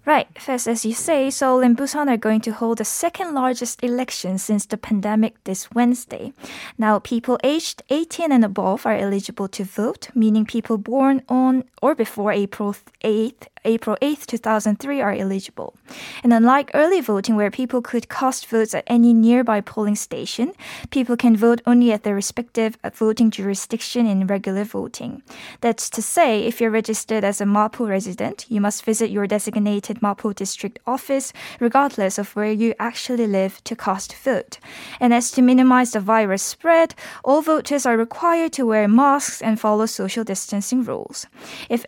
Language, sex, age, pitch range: Korean, female, 20-39, 215-255 Hz